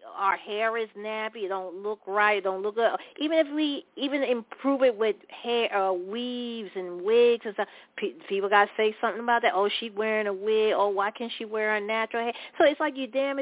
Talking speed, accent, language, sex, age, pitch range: 230 wpm, American, English, female, 40-59, 200-275 Hz